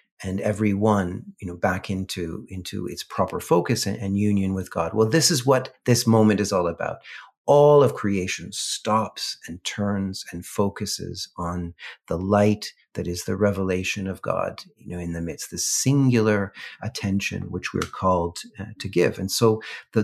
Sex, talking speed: male, 180 wpm